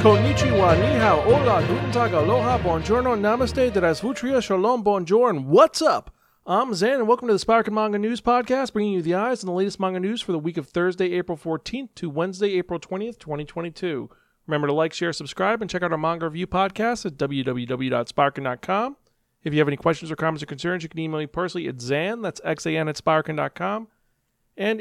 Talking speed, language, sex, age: 195 wpm, English, male, 40-59